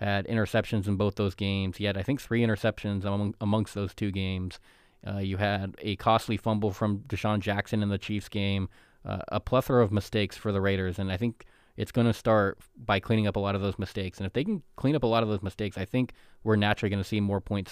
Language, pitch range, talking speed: English, 100-115 Hz, 245 wpm